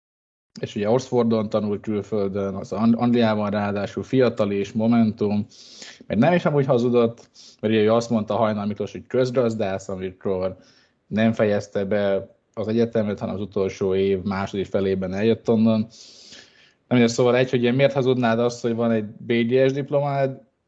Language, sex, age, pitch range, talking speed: Hungarian, male, 20-39, 105-120 Hz, 145 wpm